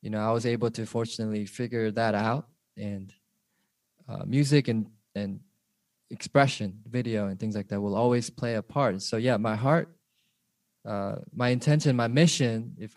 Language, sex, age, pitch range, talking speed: English, male, 20-39, 105-125 Hz, 165 wpm